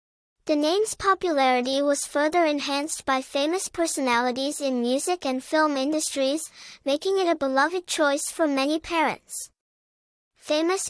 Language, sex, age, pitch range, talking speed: English, male, 10-29, 270-335 Hz, 125 wpm